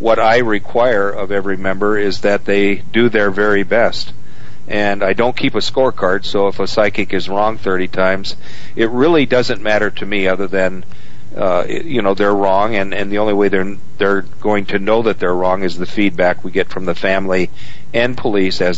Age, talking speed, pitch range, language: 50-69, 205 wpm, 95-110 Hz, English